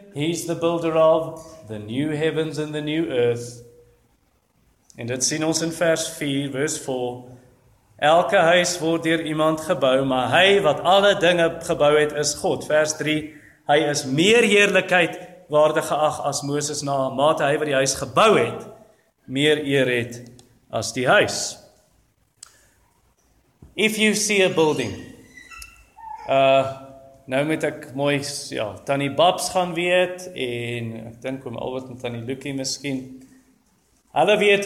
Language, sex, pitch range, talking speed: English, male, 135-170 Hz, 150 wpm